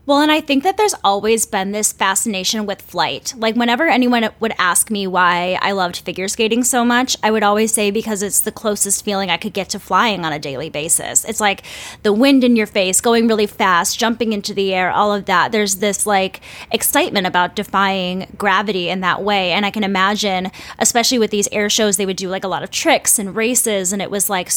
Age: 10-29